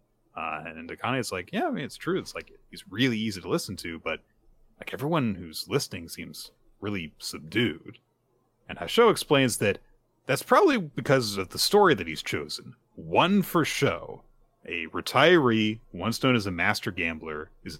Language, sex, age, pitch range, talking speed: English, male, 30-49, 95-140 Hz, 170 wpm